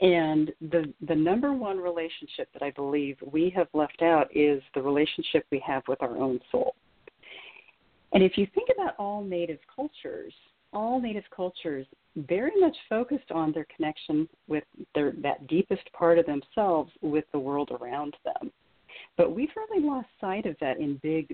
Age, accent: 50-69, American